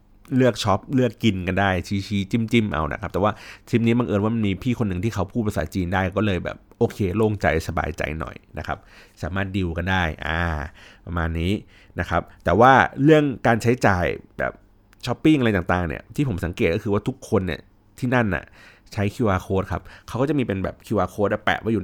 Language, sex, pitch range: Thai, male, 95-115 Hz